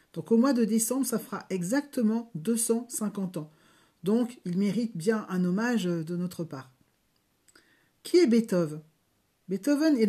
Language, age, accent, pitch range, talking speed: French, 50-69, French, 190-240 Hz, 145 wpm